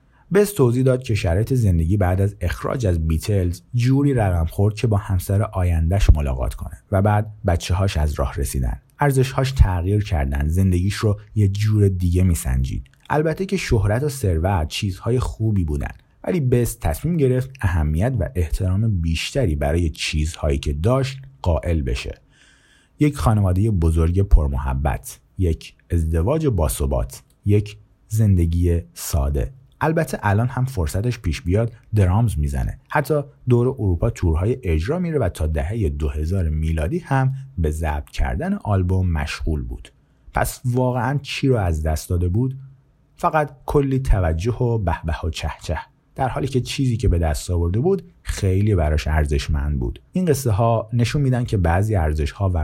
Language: Persian